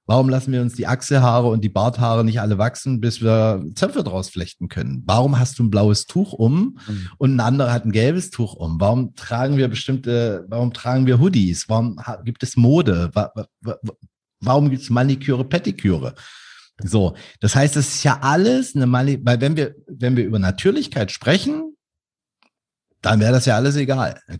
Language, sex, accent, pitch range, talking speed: German, male, German, 110-140 Hz, 180 wpm